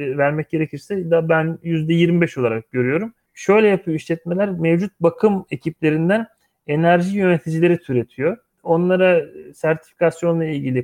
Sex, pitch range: male, 140-185 Hz